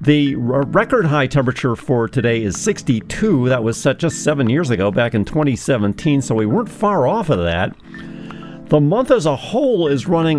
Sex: male